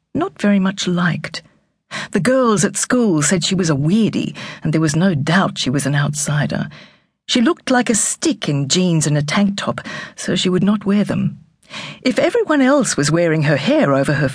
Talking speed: 200 wpm